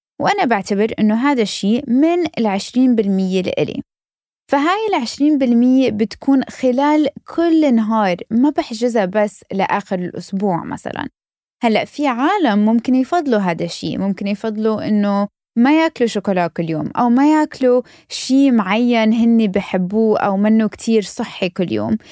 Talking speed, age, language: 135 wpm, 20-39, Arabic